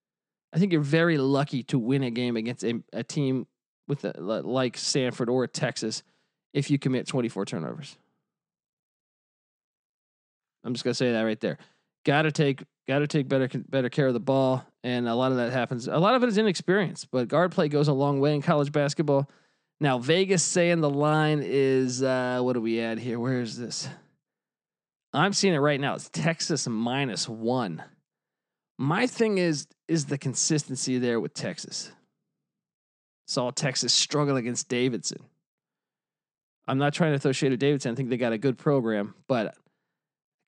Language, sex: English, male